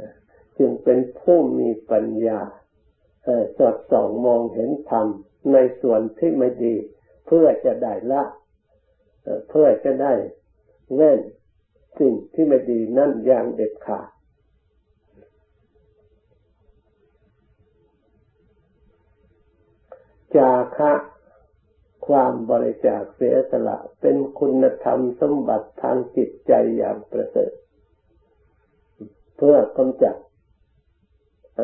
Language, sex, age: Thai, male, 60-79